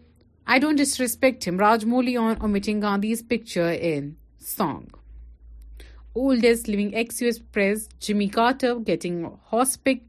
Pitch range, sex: 175-235 Hz, female